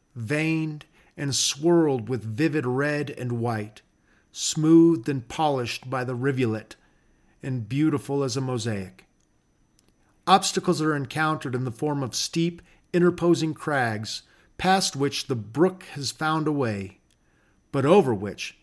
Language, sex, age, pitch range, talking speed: English, male, 40-59, 125-165 Hz, 130 wpm